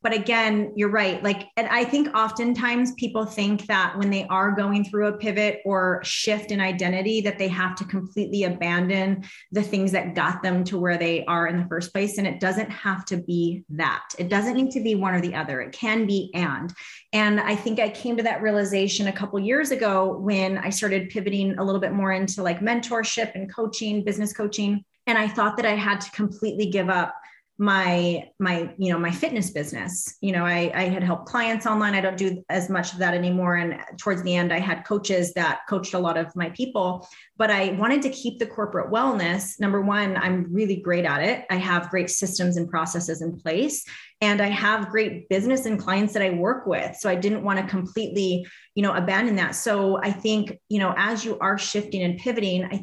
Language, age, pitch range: English, 30-49, 185-210 Hz